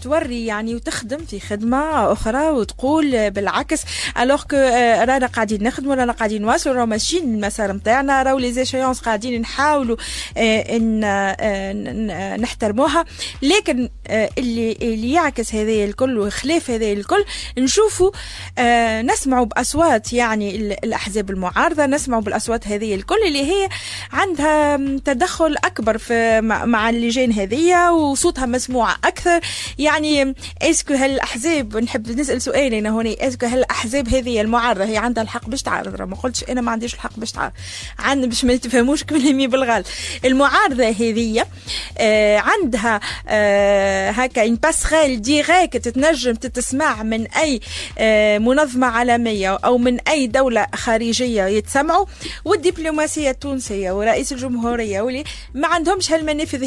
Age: 20-39